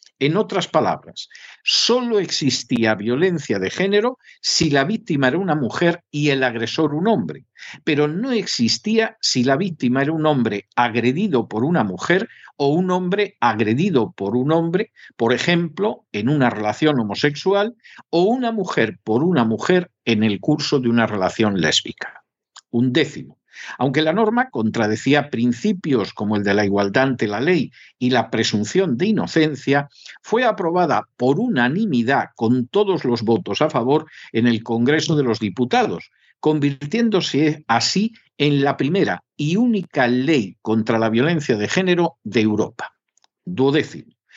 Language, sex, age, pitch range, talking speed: Spanish, male, 50-69, 120-180 Hz, 150 wpm